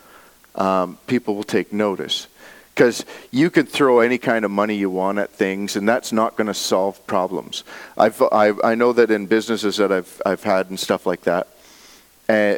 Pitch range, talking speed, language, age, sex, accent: 85-115 Hz, 190 wpm, English, 40-59, male, American